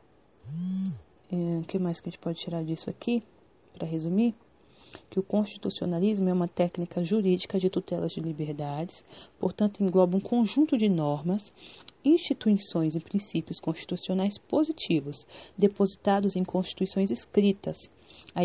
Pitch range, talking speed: 170-200 Hz, 125 wpm